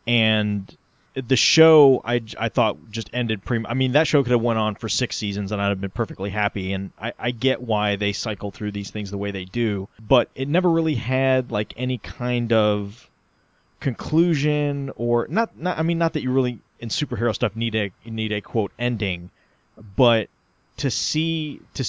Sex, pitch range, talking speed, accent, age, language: male, 105-135 Hz, 195 wpm, American, 30-49, English